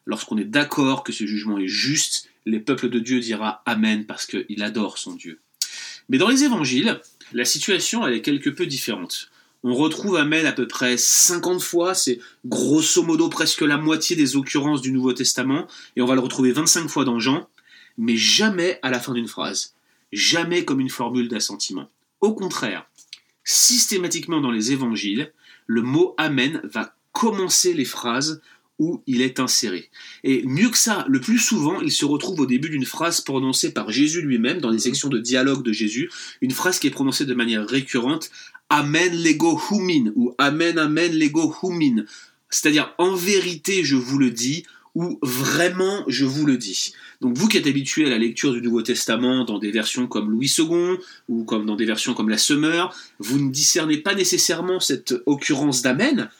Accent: French